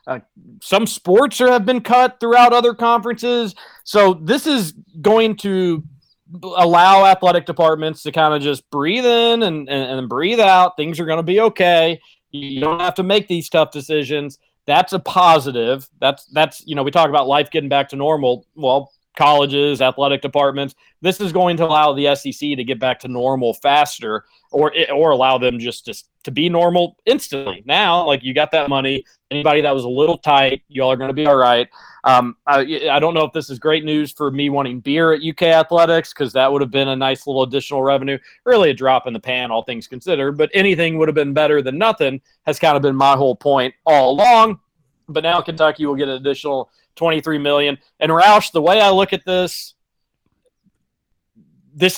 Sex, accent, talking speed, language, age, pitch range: male, American, 200 wpm, English, 40-59, 140-180 Hz